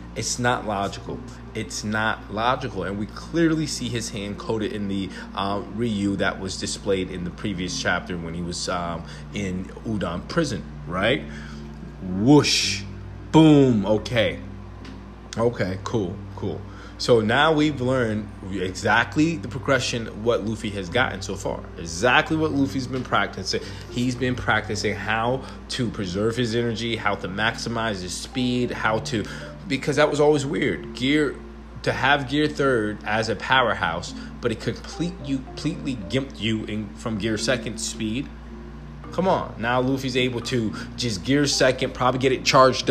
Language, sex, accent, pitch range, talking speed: English, male, American, 95-125 Hz, 150 wpm